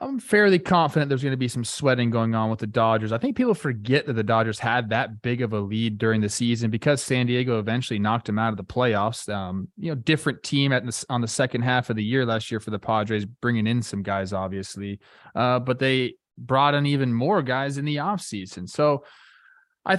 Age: 20-39